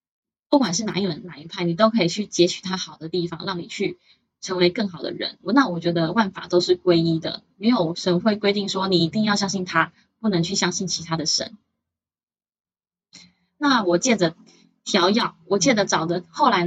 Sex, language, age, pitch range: female, Chinese, 20-39, 175-205 Hz